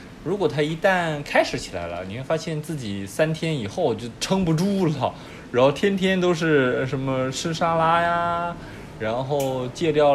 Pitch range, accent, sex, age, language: 105-150 Hz, native, male, 20-39, Chinese